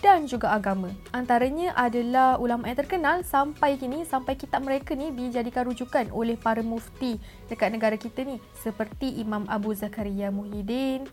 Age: 20-39